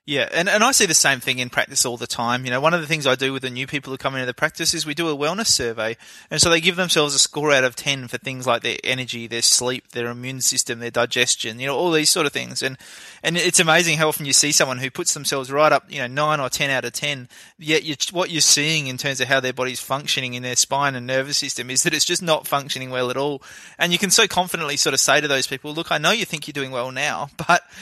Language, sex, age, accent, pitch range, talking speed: English, male, 20-39, Australian, 130-170 Hz, 290 wpm